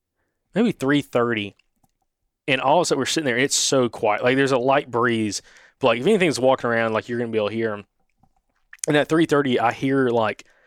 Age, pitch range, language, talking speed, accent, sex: 20-39, 110-135 Hz, English, 230 wpm, American, male